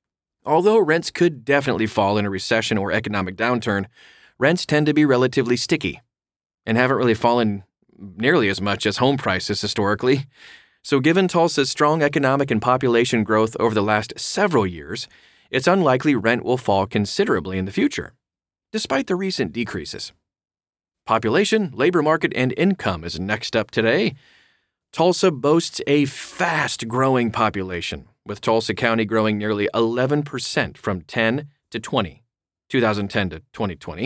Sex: male